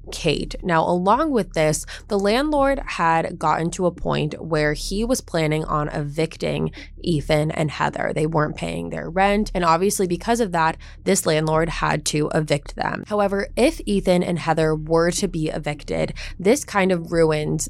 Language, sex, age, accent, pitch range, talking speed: English, female, 20-39, American, 155-195 Hz, 170 wpm